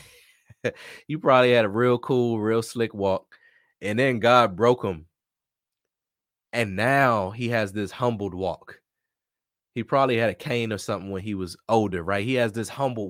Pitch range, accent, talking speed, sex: 90-105 Hz, American, 170 wpm, male